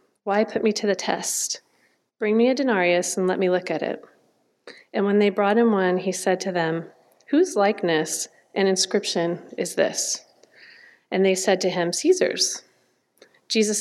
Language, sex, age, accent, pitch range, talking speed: English, female, 30-49, American, 185-220 Hz, 170 wpm